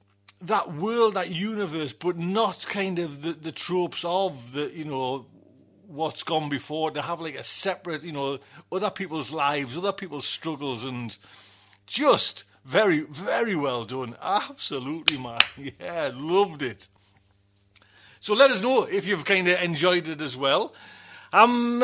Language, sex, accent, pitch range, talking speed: English, male, British, 130-195 Hz, 150 wpm